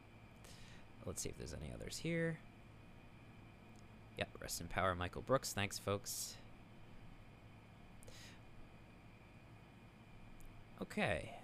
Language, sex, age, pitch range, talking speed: English, male, 20-39, 95-115 Hz, 90 wpm